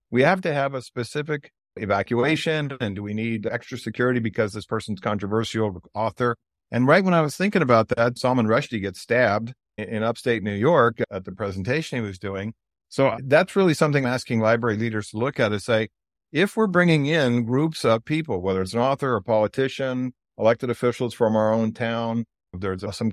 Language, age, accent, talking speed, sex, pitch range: English, 50-69, American, 195 wpm, male, 105-135 Hz